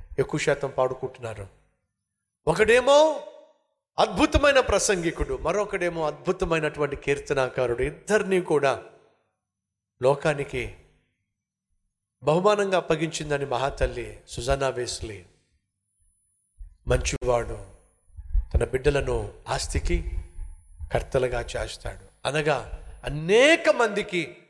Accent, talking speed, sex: native, 65 wpm, male